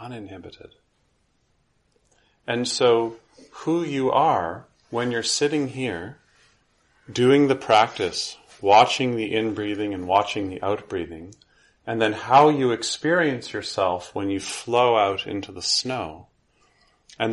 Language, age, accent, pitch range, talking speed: English, 40-59, American, 100-125 Hz, 120 wpm